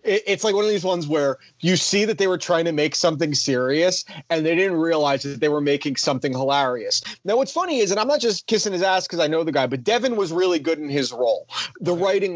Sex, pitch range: male, 140-185 Hz